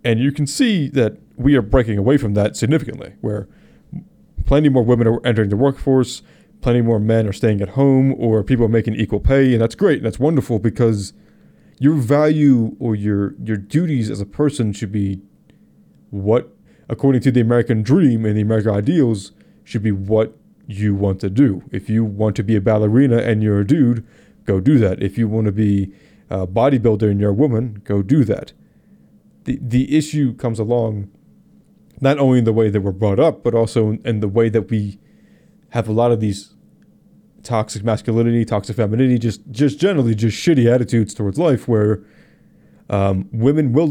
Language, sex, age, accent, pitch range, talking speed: English, male, 30-49, American, 105-125 Hz, 190 wpm